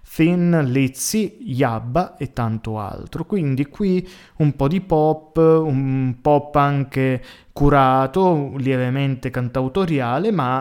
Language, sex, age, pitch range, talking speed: Italian, male, 20-39, 120-150 Hz, 105 wpm